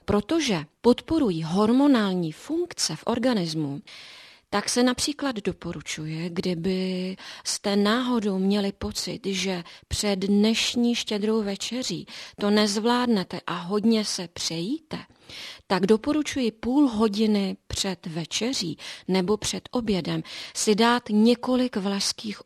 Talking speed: 105 wpm